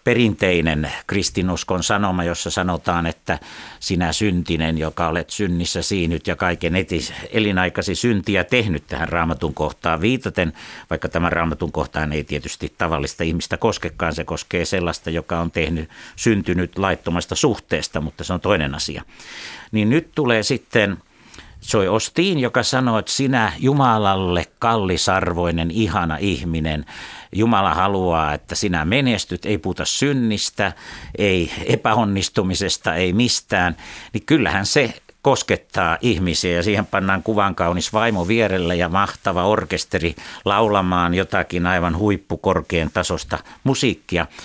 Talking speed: 125 wpm